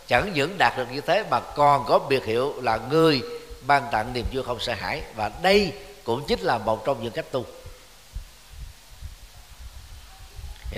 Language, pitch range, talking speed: Vietnamese, 115-155 Hz, 175 wpm